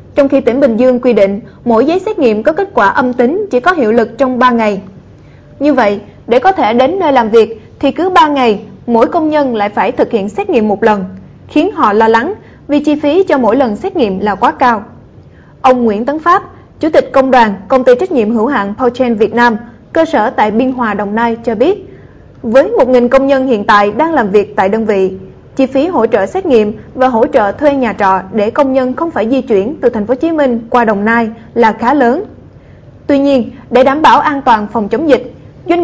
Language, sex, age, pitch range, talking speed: Vietnamese, female, 20-39, 225-285 Hz, 240 wpm